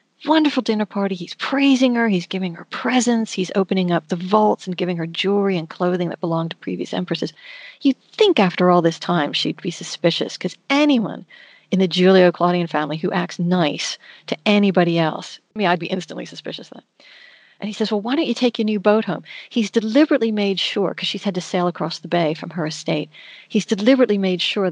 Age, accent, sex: 40-59, American, female